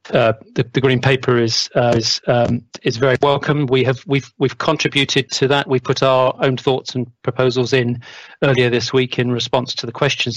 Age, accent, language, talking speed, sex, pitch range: 40-59, British, English, 205 wpm, male, 120-135 Hz